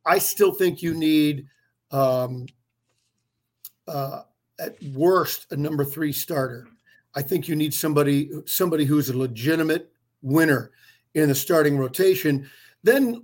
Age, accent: 50-69, American